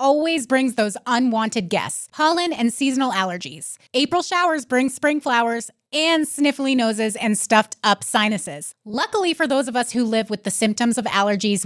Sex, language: female, English